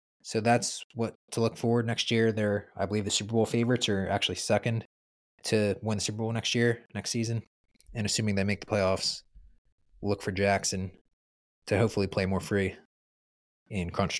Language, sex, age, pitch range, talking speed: English, male, 20-39, 95-110 Hz, 180 wpm